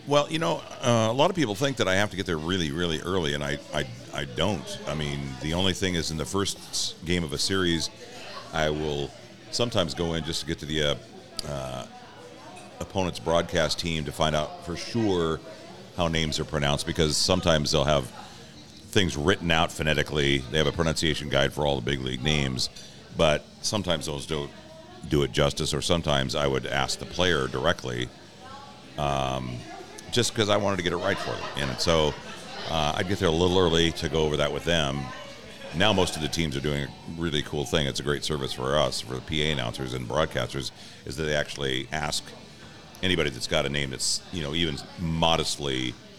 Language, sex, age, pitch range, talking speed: English, male, 40-59, 70-85 Hz, 205 wpm